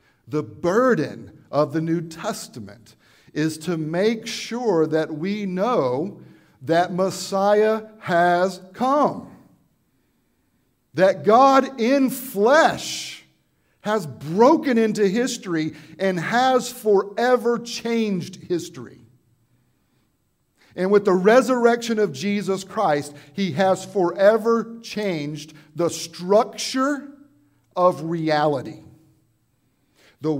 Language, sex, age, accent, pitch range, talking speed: English, male, 50-69, American, 145-215 Hz, 90 wpm